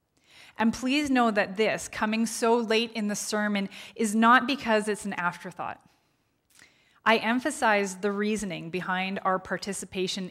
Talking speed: 140 wpm